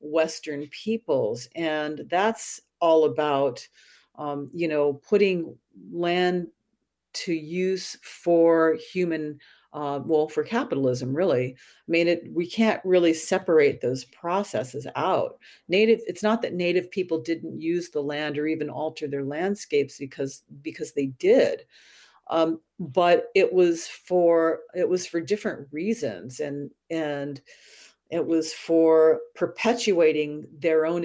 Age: 50-69